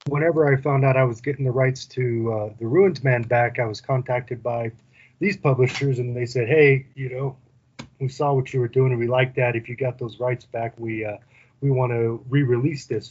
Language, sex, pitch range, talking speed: English, male, 120-135 Hz, 230 wpm